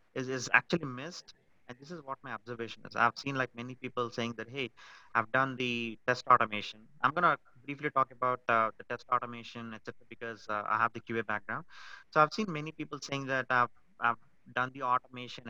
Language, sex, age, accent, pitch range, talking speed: English, male, 30-49, Indian, 120-150 Hz, 200 wpm